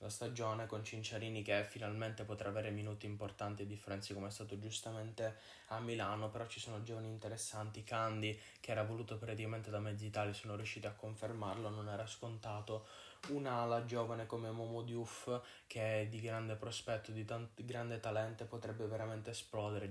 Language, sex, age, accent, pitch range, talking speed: Italian, male, 10-29, native, 110-120 Hz, 165 wpm